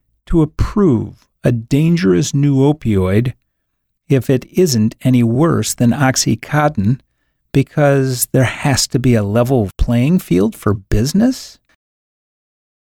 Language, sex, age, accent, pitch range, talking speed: English, male, 40-59, American, 110-145 Hz, 110 wpm